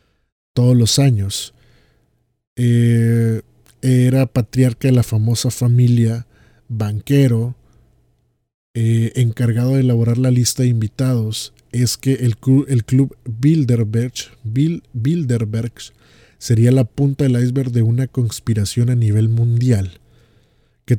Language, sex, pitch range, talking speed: Spanish, male, 110-125 Hz, 110 wpm